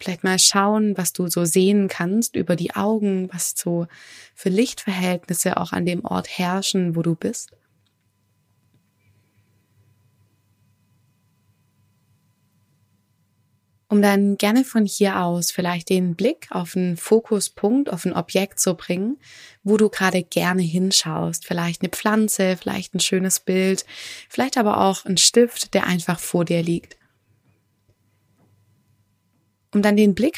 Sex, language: female, German